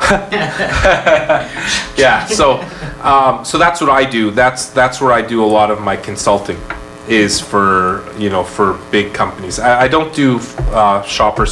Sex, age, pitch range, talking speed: male, 30-49, 100-135 Hz, 160 wpm